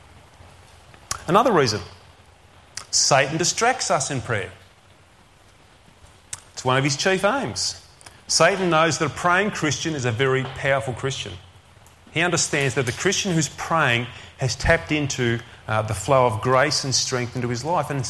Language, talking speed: English, 150 wpm